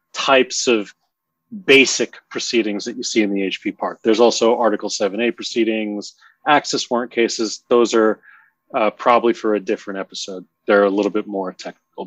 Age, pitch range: 30-49, 105-130 Hz